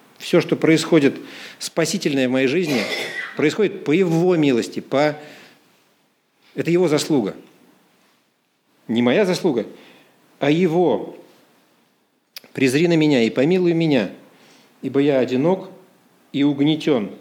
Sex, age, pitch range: male, 50-69, 140-185 Hz